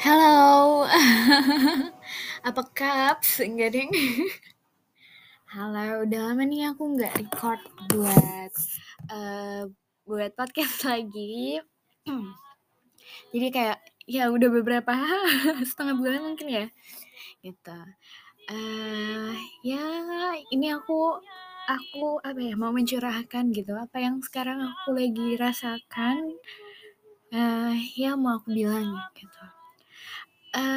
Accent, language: native, Indonesian